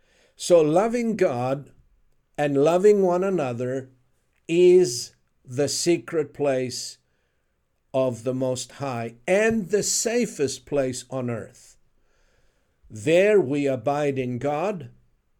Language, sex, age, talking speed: English, male, 60-79, 100 wpm